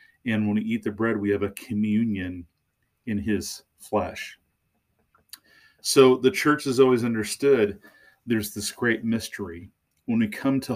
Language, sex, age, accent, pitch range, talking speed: English, male, 40-59, American, 105-125 Hz, 150 wpm